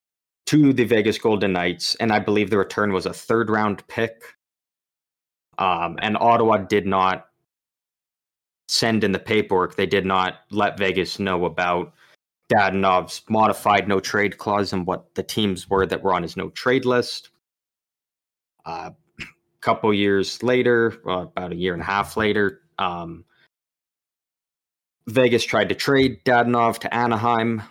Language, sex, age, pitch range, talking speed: English, male, 20-39, 95-115 Hz, 150 wpm